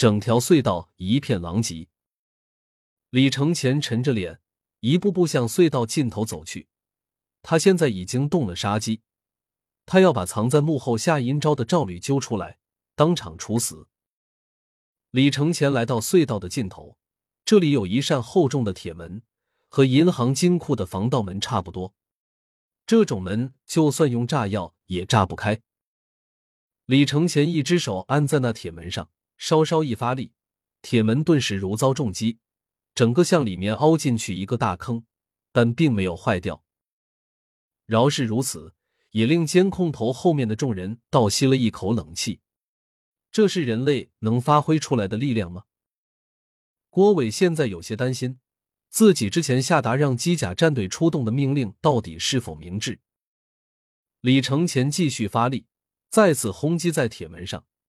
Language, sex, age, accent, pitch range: Chinese, male, 30-49, native, 100-150 Hz